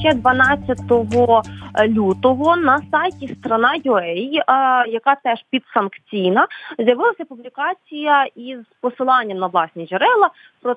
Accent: native